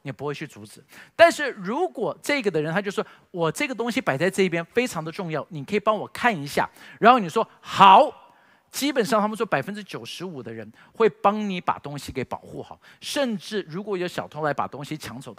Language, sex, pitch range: Chinese, male, 160-235 Hz